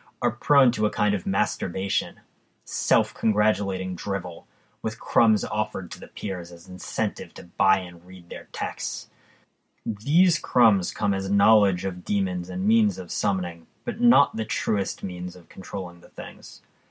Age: 30-49